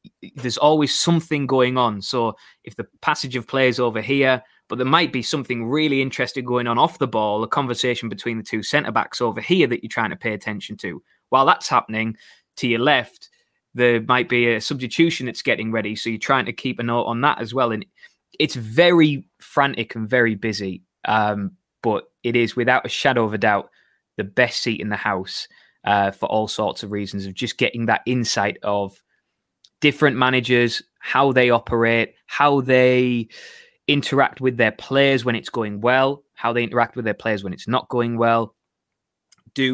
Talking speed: 195 wpm